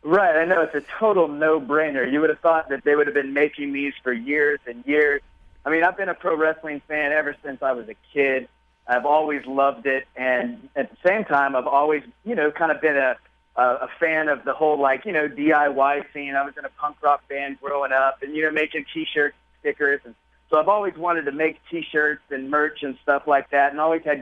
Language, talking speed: English, 235 wpm